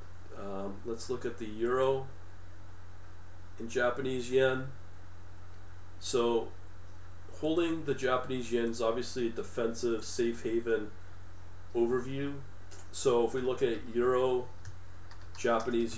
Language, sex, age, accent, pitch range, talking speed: English, male, 40-59, American, 90-115 Hz, 105 wpm